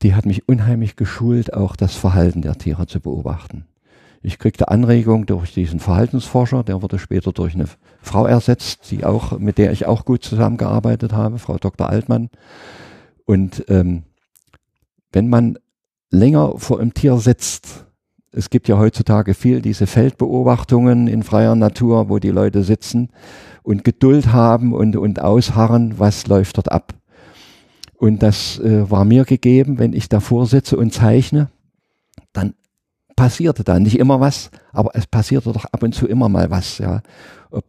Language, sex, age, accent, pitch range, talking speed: German, male, 50-69, German, 95-120 Hz, 160 wpm